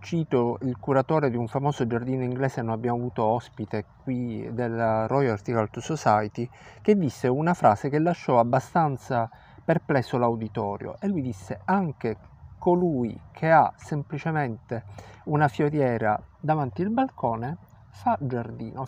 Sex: male